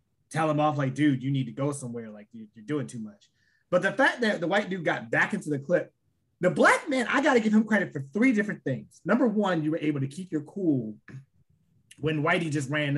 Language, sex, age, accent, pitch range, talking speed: English, male, 20-39, American, 140-210 Hz, 245 wpm